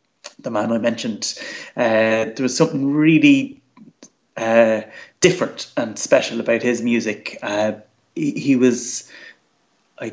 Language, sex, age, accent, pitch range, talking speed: English, male, 30-49, Irish, 115-135 Hz, 125 wpm